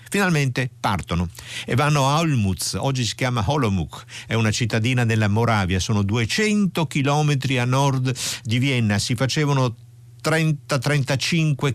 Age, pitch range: 50-69, 110-135 Hz